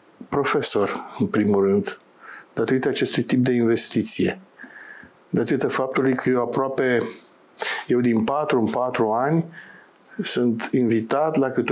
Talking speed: 125 wpm